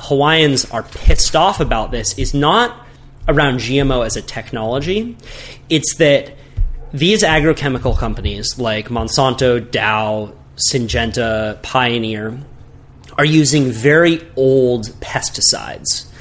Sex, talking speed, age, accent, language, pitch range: male, 105 wpm, 30-49, American, English, 115-150 Hz